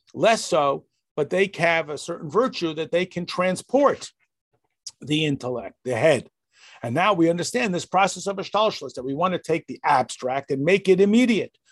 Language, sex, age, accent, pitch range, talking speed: English, male, 50-69, American, 150-195 Hz, 180 wpm